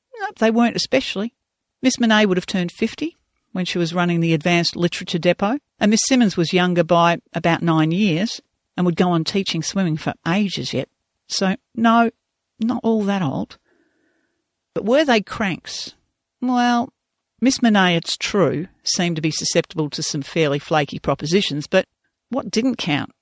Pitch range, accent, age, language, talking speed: 155-210 Hz, Australian, 50-69, English, 165 wpm